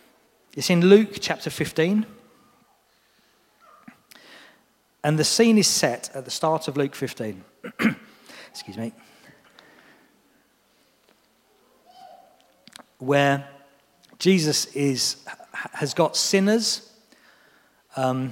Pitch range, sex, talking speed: 120-160 Hz, male, 80 wpm